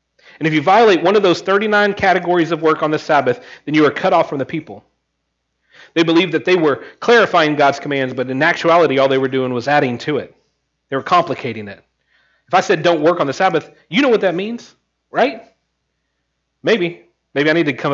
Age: 40-59